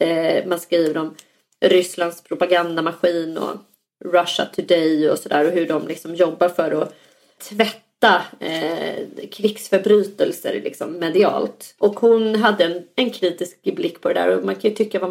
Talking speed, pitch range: 145 wpm, 170-220 Hz